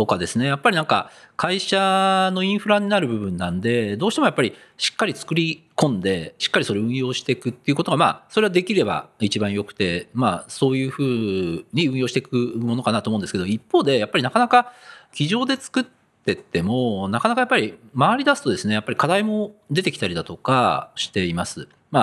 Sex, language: male, Japanese